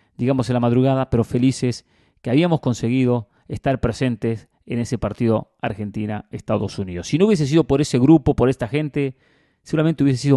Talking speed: 170 wpm